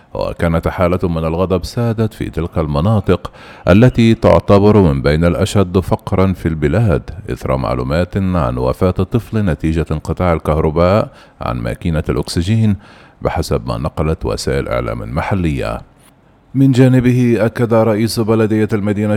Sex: male